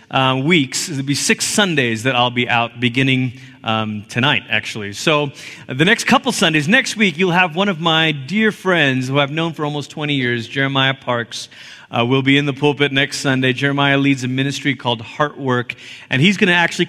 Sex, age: male, 30-49